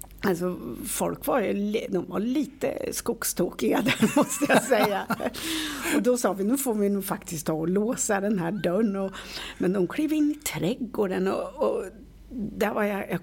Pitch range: 170-235 Hz